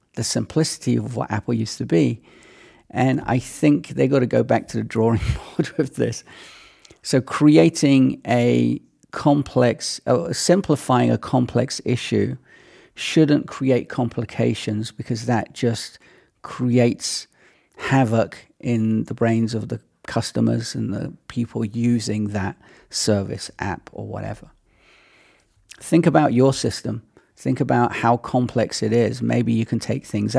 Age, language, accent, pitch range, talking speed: 40-59, English, British, 110-125 Hz, 135 wpm